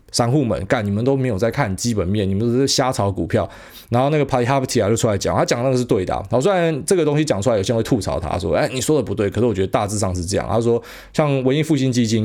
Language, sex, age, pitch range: Chinese, male, 20-39, 100-130 Hz